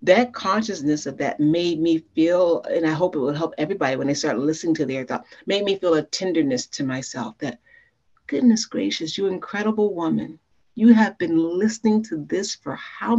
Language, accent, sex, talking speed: English, American, female, 190 wpm